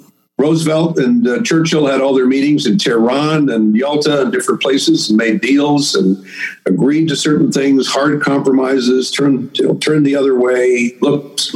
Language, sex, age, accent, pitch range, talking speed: English, male, 50-69, American, 135-165 Hz, 170 wpm